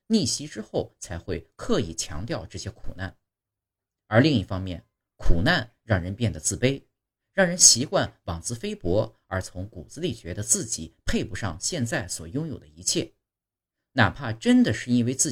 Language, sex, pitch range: Chinese, male, 95-125 Hz